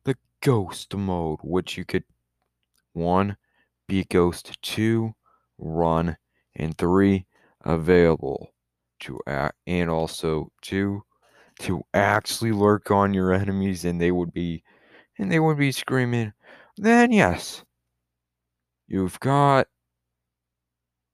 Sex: male